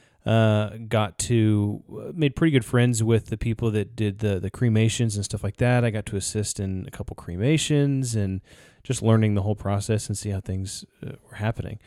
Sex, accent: male, American